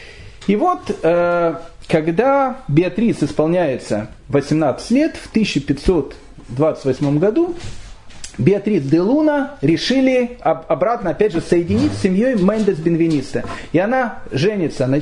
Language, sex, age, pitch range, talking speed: Russian, male, 40-59, 150-225 Hz, 105 wpm